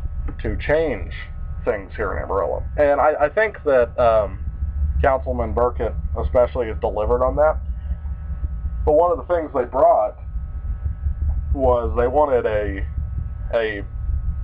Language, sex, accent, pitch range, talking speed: English, male, American, 75-130 Hz, 130 wpm